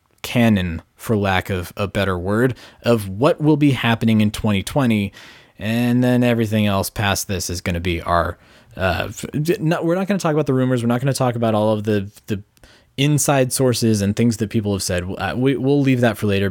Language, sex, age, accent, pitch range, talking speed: English, male, 20-39, American, 100-135 Hz, 220 wpm